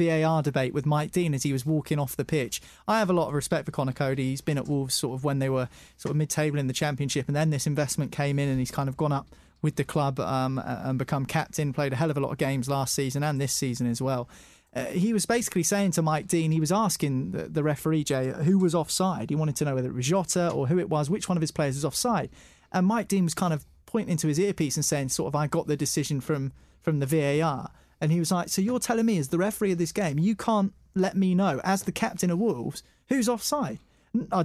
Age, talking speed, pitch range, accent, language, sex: 30-49, 270 wpm, 140-185 Hz, British, English, male